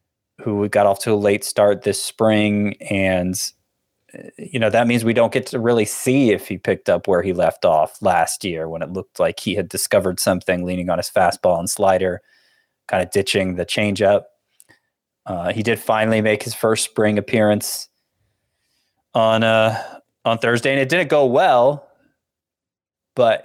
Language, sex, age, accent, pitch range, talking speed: English, male, 20-39, American, 95-115 Hz, 175 wpm